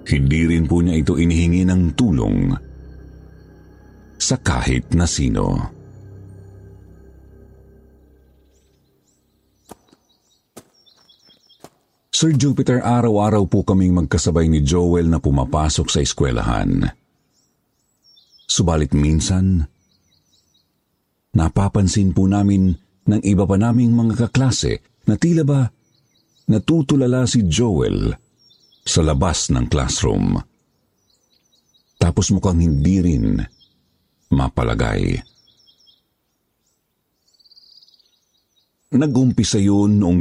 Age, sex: 50-69, male